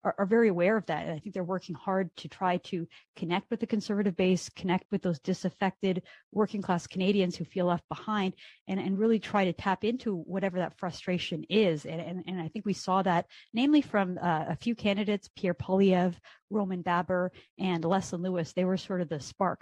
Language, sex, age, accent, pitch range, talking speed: English, female, 30-49, American, 170-195 Hz, 210 wpm